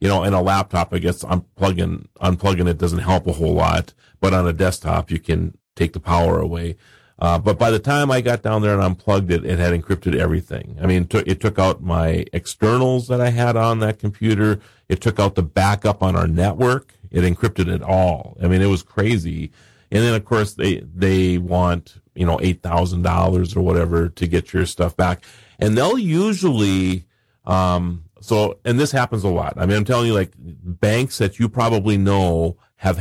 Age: 40-59